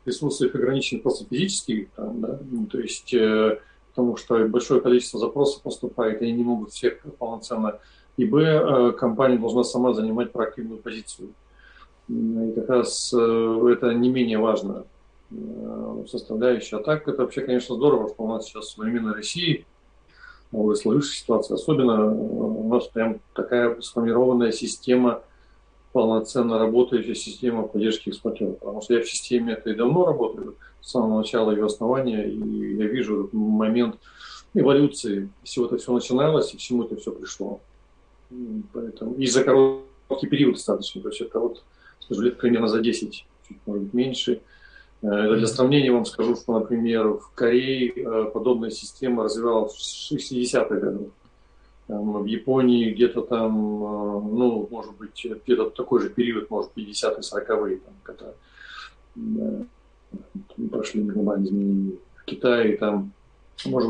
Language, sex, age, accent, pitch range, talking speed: Russian, male, 40-59, native, 110-125 Hz, 145 wpm